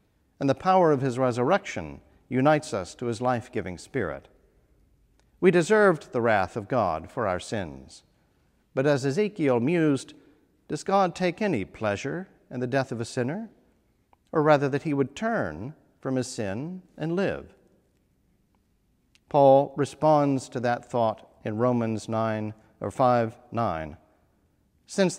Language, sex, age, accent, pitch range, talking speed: English, male, 50-69, American, 110-150 Hz, 135 wpm